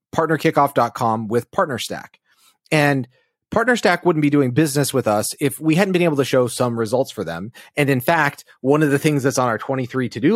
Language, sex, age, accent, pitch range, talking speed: English, male, 30-49, American, 125-170 Hz, 220 wpm